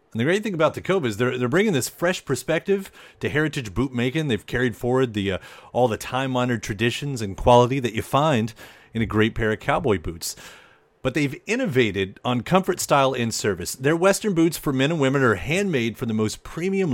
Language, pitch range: English, 115-160 Hz